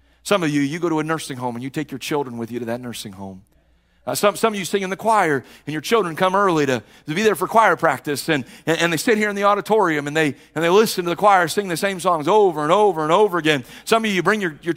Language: English